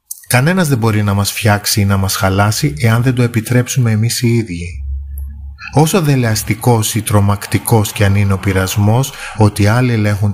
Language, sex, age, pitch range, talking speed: Greek, male, 30-49, 95-125 Hz, 170 wpm